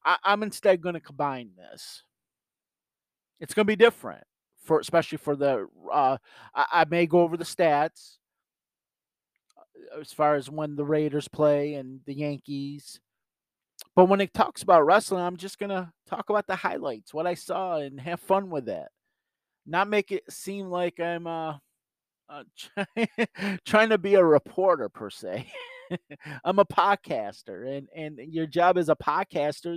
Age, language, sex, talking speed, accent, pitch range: 40-59, English, male, 165 wpm, American, 140-190 Hz